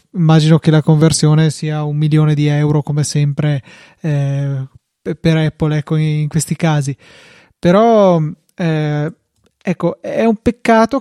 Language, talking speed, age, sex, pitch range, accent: Italian, 130 wpm, 20-39, male, 155-185 Hz, native